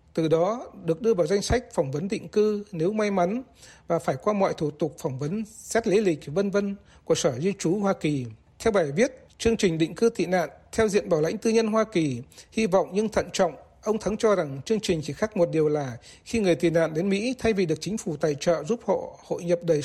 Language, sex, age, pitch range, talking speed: Vietnamese, male, 60-79, 165-210 Hz, 255 wpm